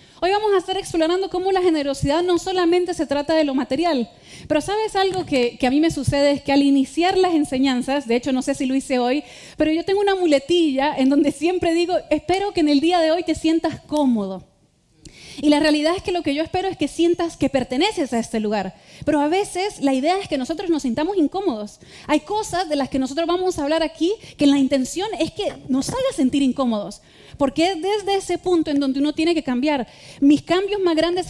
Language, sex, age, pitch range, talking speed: Spanish, female, 30-49, 265-335 Hz, 225 wpm